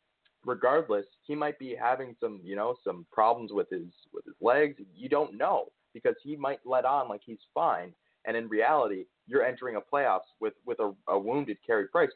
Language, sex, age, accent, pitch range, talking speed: English, male, 20-39, American, 105-155 Hz, 195 wpm